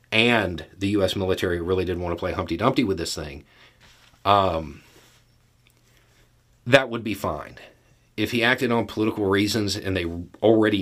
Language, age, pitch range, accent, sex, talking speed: English, 40-59, 95-120 Hz, American, male, 155 wpm